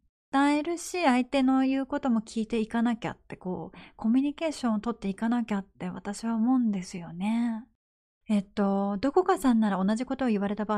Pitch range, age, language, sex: 200-275 Hz, 30-49, Japanese, female